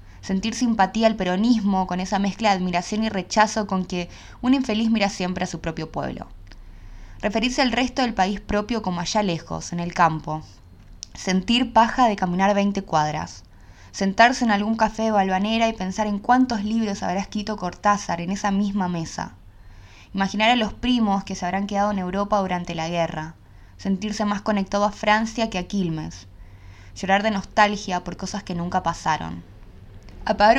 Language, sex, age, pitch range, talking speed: English, female, 20-39, 165-210 Hz, 170 wpm